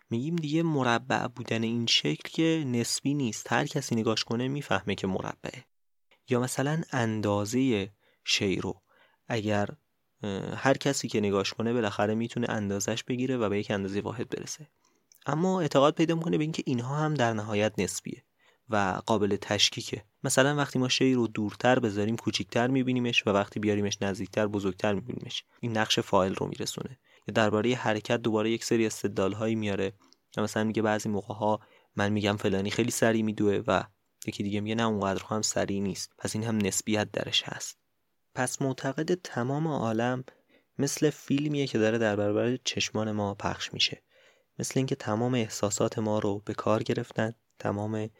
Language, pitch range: Persian, 105-125 Hz